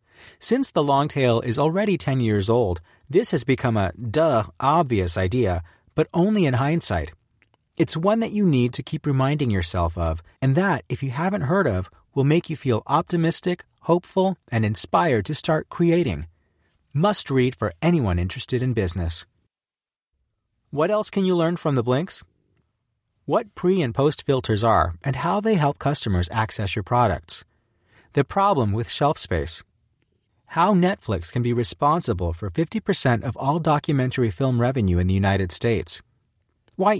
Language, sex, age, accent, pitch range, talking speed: English, male, 30-49, American, 105-160 Hz, 155 wpm